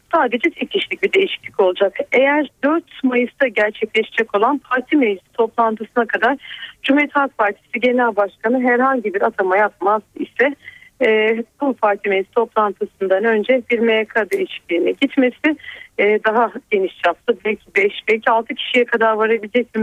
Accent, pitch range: native, 225-285 Hz